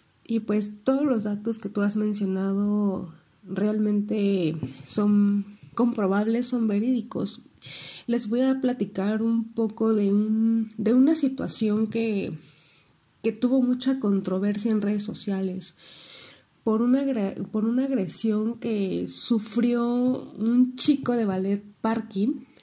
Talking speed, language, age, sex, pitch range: 120 wpm, Spanish, 30-49, female, 200-240 Hz